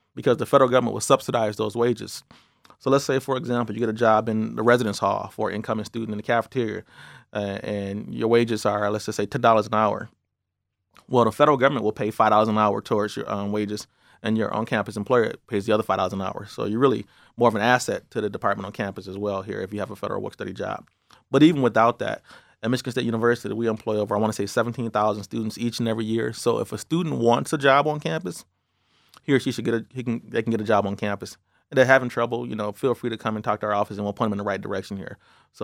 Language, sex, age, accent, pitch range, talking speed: English, male, 30-49, American, 105-120 Hz, 260 wpm